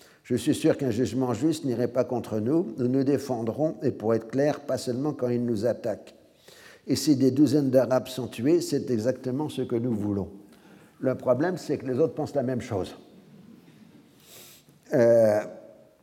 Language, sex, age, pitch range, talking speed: French, male, 60-79, 115-135 Hz, 175 wpm